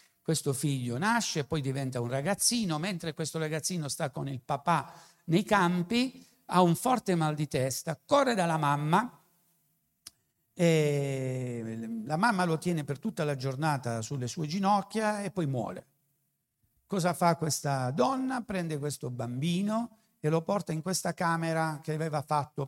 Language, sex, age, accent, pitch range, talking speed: Italian, male, 60-79, native, 135-180 Hz, 150 wpm